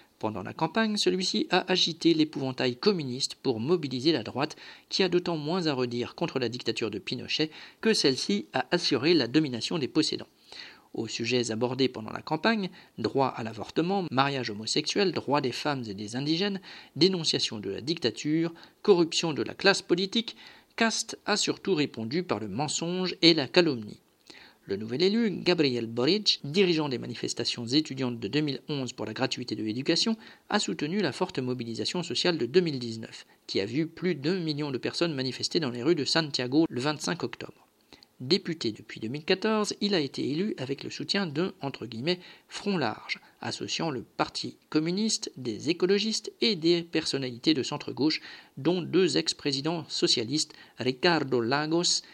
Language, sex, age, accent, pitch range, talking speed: French, male, 50-69, French, 125-180 Hz, 160 wpm